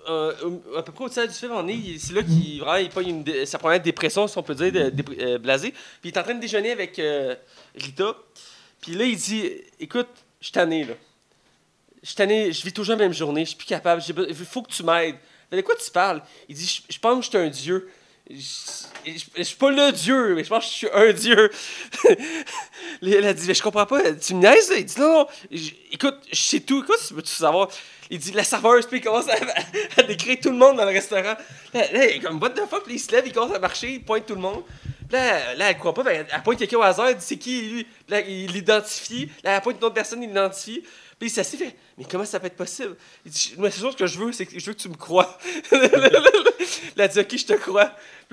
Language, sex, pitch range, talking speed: French, male, 180-250 Hz, 260 wpm